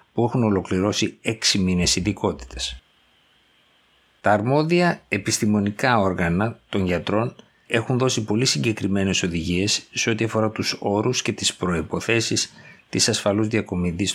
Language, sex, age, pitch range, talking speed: Greek, male, 60-79, 90-115 Hz, 120 wpm